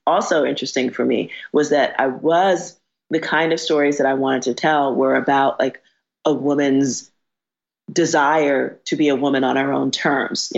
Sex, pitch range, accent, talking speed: female, 135-160 Hz, American, 180 wpm